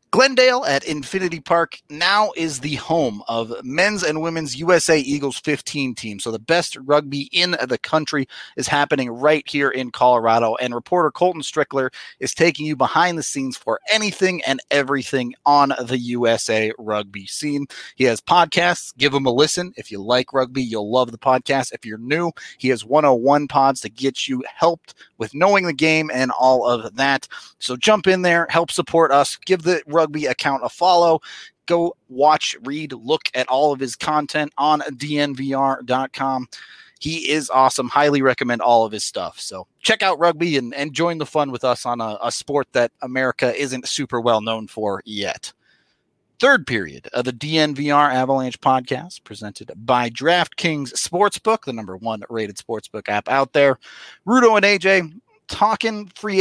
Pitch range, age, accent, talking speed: 125-170 Hz, 30-49, American, 175 wpm